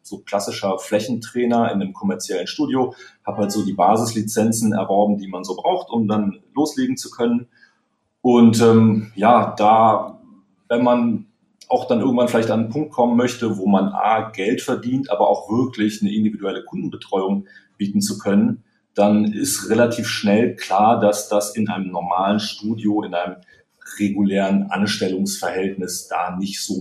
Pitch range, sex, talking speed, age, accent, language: 100-130 Hz, male, 150 wpm, 40-59, German, German